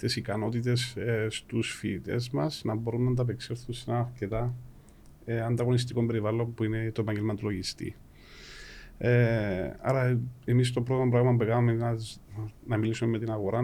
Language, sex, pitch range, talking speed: Greek, male, 105-125 Hz, 160 wpm